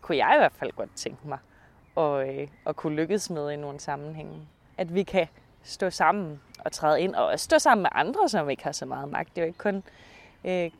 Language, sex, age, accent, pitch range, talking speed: Danish, female, 20-39, native, 155-190 Hz, 240 wpm